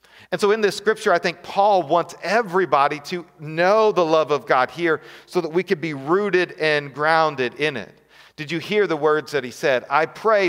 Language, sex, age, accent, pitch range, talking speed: English, male, 40-59, American, 160-195 Hz, 210 wpm